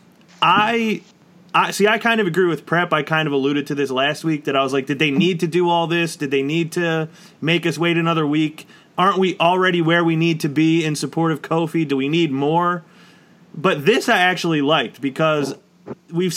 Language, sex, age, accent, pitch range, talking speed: English, male, 30-49, American, 150-180 Hz, 220 wpm